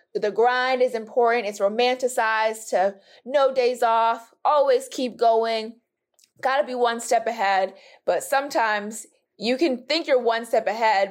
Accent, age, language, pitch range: American, 20-39, English, 200-255 Hz